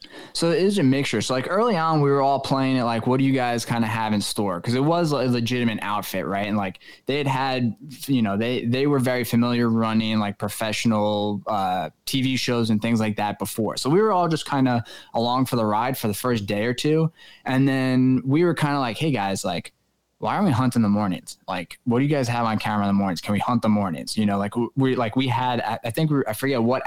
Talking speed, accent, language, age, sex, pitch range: 260 wpm, American, English, 10-29, male, 105-130 Hz